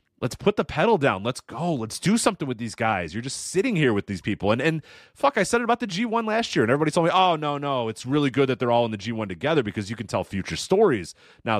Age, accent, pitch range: 30-49, American, 110-155 Hz